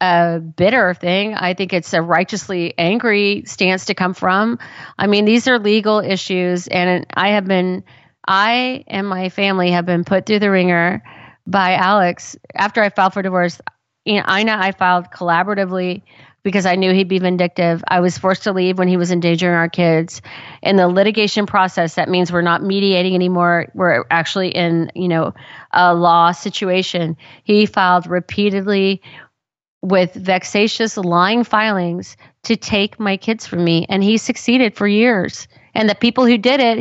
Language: English